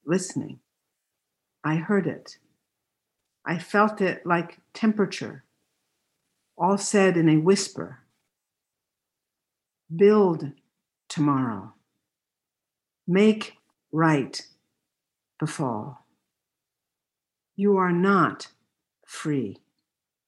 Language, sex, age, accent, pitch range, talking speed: English, female, 60-79, American, 155-190 Hz, 70 wpm